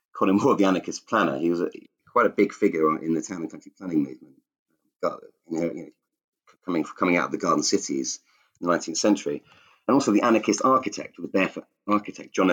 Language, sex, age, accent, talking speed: English, male, 30-49, British, 215 wpm